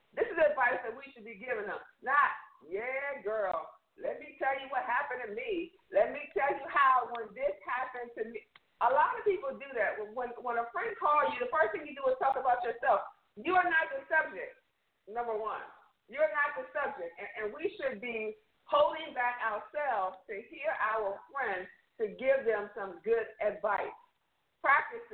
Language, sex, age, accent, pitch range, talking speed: English, female, 50-69, American, 225-340 Hz, 195 wpm